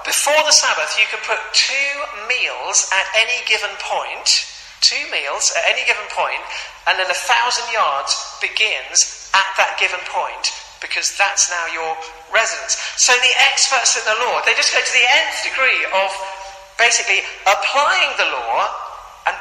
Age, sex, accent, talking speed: 40-59, male, British, 160 wpm